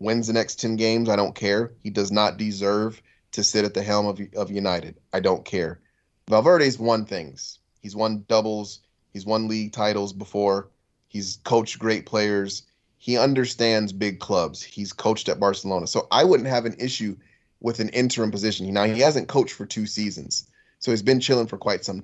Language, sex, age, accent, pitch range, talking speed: English, male, 30-49, American, 100-110 Hz, 190 wpm